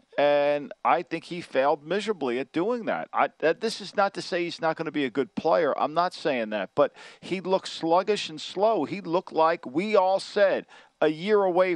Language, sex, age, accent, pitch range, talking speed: English, male, 50-69, American, 160-215 Hz, 210 wpm